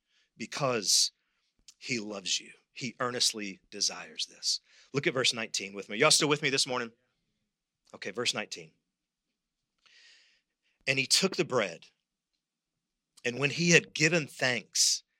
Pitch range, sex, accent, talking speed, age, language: 130-200 Hz, male, American, 135 wpm, 40-59, English